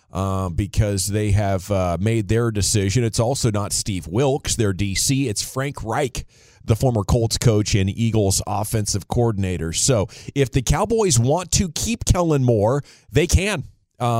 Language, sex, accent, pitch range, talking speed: English, male, American, 100-130 Hz, 160 wpm